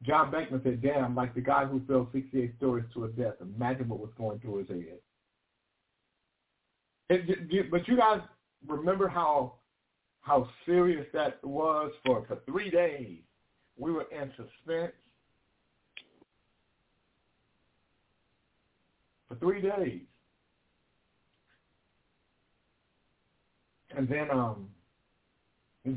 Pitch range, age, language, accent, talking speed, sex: 125-170 Hz, 60-79, English, American, 115 wpm, male